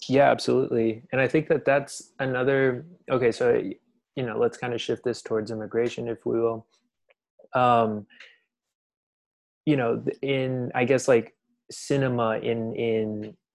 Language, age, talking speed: English, 20-39, 140 wpm